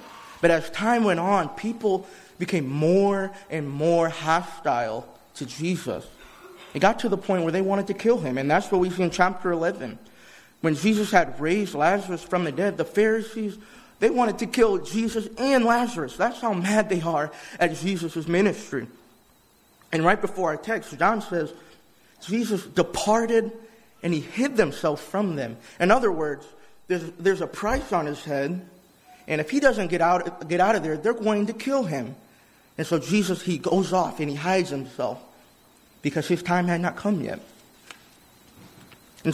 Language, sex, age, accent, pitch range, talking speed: English, male, 30-49, American, 160-205 Hz, 175 wpm